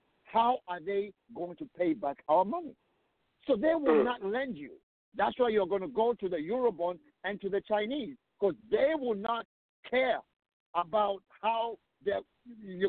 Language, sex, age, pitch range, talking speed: English, male, 50-69, 170-230 Hz, 170 wpm